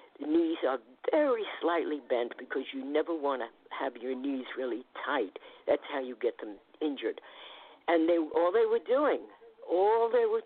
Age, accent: 50-69, American